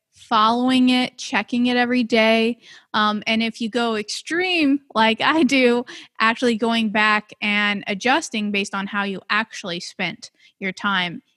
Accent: American